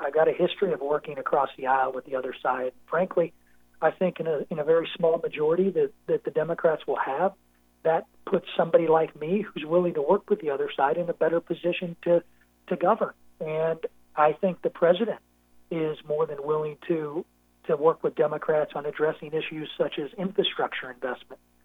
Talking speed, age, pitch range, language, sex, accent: 195 wpm, 40-59, 155-190 Hz, English, male, American